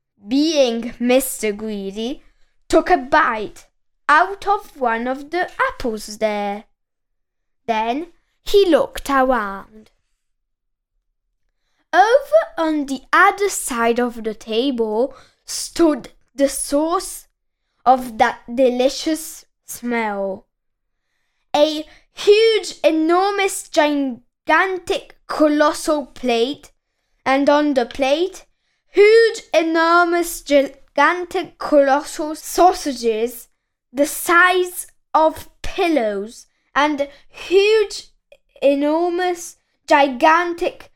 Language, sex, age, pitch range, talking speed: Italian, female, 10-29, 255-355 Hz, 80 wpm